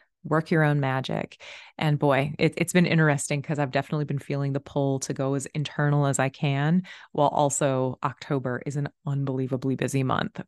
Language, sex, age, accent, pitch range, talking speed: English, female, 20-39, American, 140-180 Hz, 180 wpm